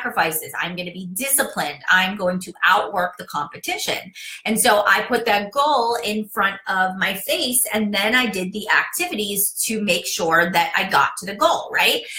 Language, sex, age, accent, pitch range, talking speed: English, female, 30-49, American, 180-240 Hz, 185 wpm